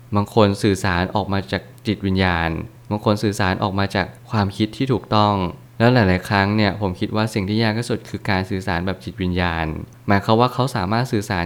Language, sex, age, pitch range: Thai, male, 20-39, 95-115 Hz